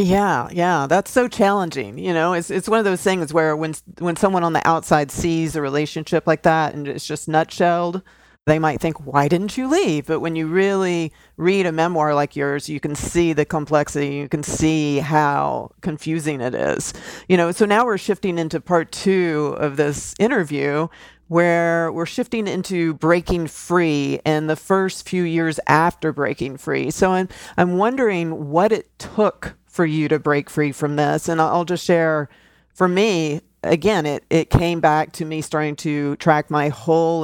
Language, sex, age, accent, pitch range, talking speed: English, female, 40-59, American, 150-180 Hz, 185 wpm